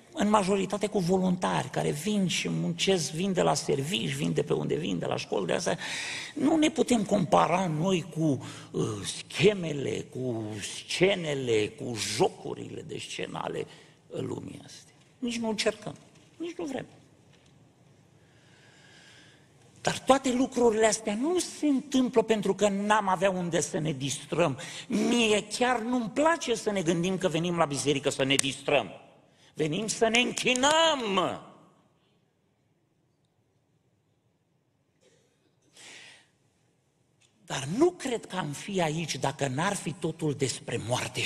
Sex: male